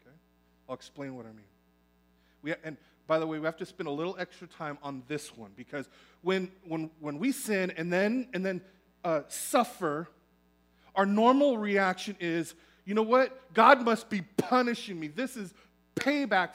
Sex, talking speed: male, 175 wpm